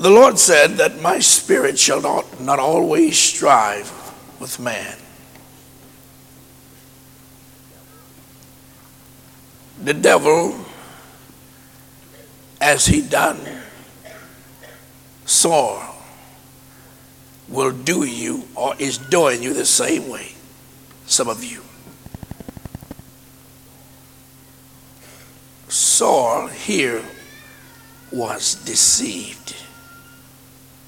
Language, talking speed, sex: English, 70 wpm, male